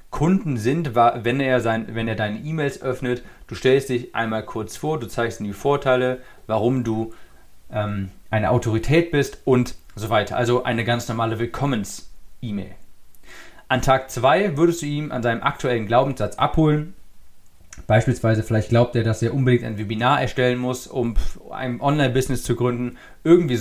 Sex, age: male, 40-59